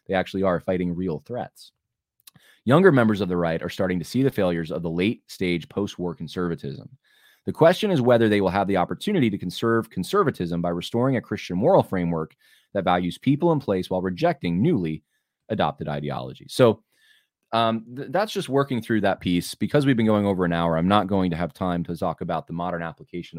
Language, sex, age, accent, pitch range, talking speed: English, male, 20-39, American, 85-115 Hz, 205 wpm